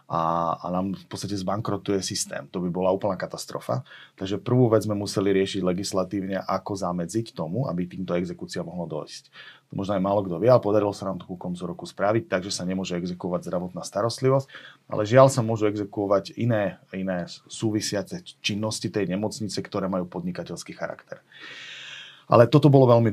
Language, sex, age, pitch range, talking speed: Slovak, male, 30-49, 95-115 Hz, 170 wpm